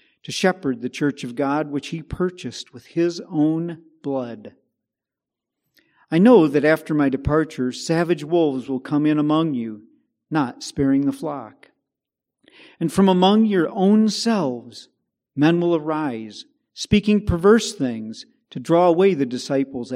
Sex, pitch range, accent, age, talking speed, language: male, 130-175 Hz, American, 40-59, 140 wpm, English